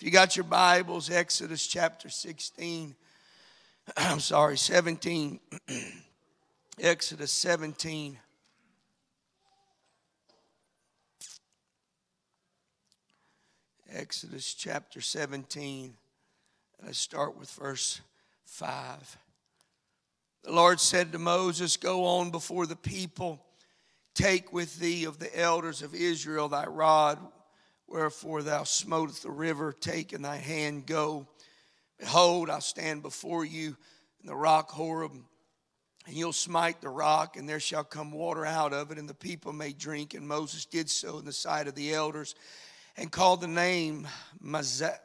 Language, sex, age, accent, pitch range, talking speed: English, male, 50-69, American, 150-175 Hz, 125 wpm